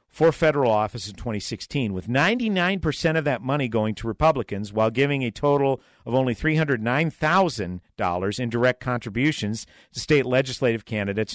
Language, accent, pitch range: English, American, 105-150 Hz